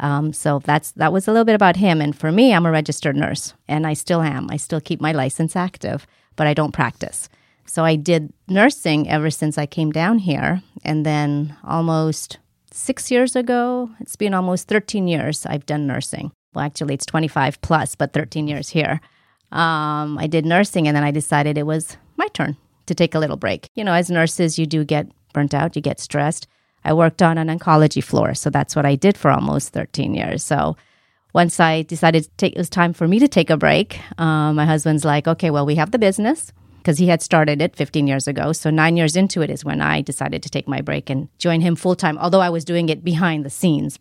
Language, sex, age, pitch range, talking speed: English, female, 30-49, 150-175 Hz, 225 wpm